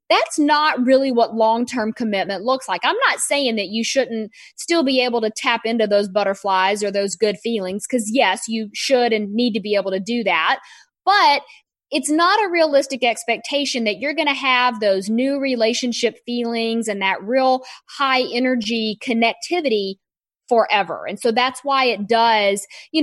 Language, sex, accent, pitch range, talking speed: English, female, American, 215-265 Hz, 175 wpm